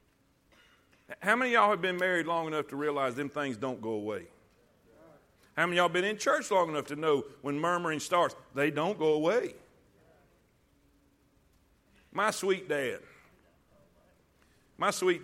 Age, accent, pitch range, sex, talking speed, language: 50-69, American, 135-195 Hz, male, 155 wpm, English